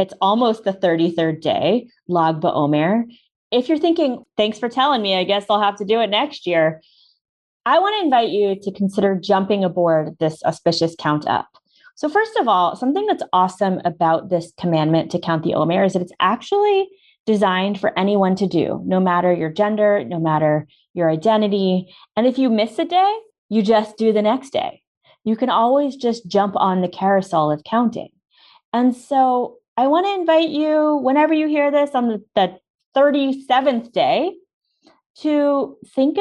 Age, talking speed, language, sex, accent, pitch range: 20-39, 175 wpm, English, female, American, 185-255 Hz